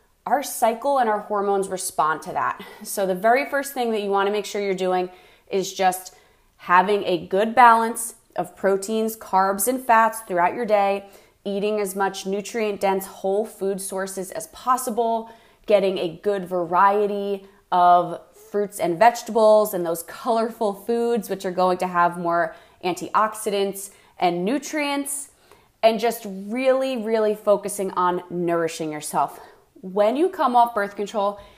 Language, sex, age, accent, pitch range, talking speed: English, female, 20-39, American, 185-230 Hz, 150 wpm